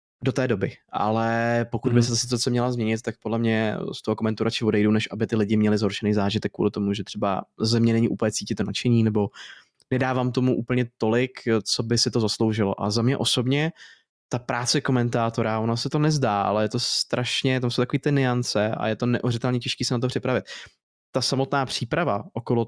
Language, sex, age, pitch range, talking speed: Czech, male, 20-39, 110-125 Hz, 210 wpm